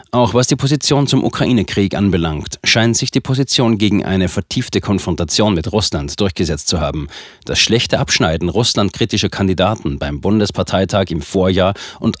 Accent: German